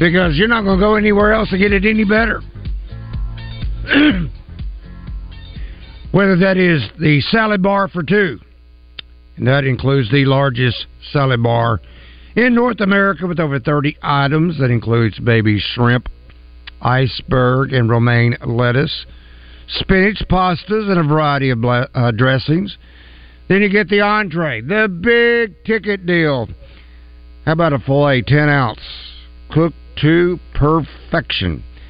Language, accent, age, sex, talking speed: English, American, 60-79, male, 130 wpm